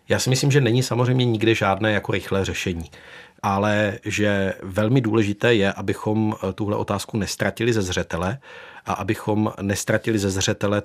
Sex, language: male, Czech